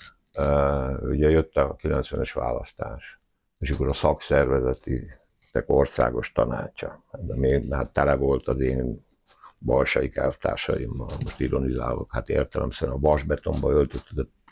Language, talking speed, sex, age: Hungarian, 115 wpm, male, 60-79